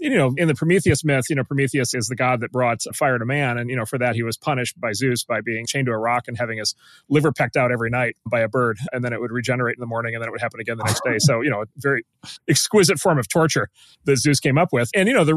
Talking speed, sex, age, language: 310 wpm, male, 30-49, English